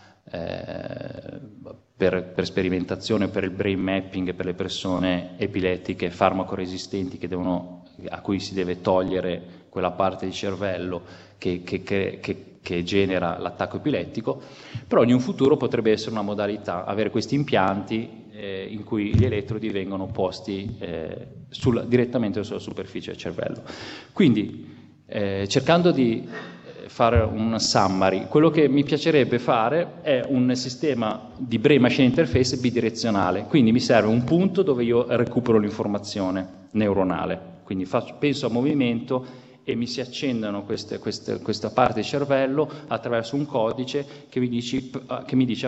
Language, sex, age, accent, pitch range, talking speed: Italian, male, 20-39, native, 95-125 Hz, 130 wpm